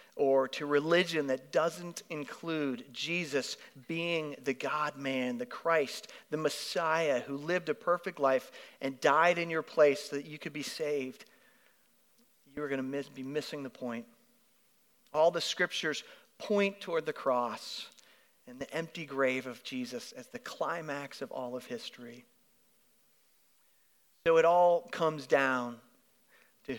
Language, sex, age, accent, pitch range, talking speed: English, male, 40-59, American, 140-180 Hz, 145 wpm